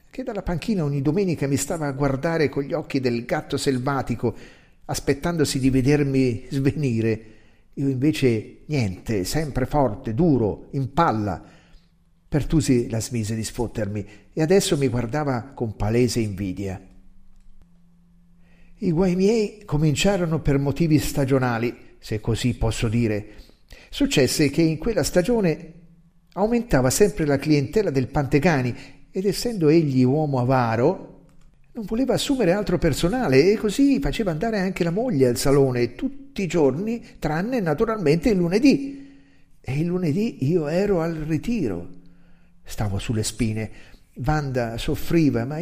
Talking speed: 130 wpm